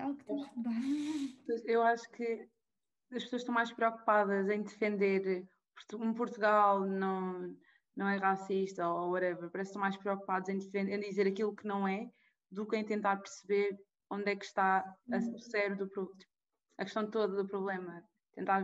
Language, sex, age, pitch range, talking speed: Portuguese, female, 20-39, 195-245 Hz, 155 wpm